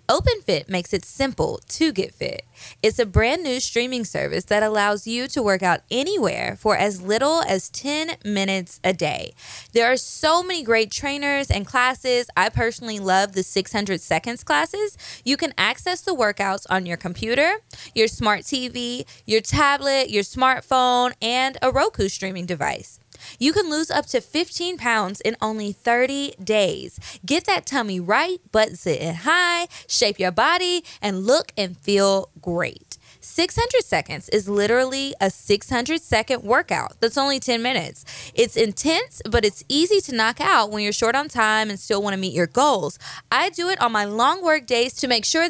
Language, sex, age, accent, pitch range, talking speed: English, female, 20-39, American, 200-285 Hz, 175 wpm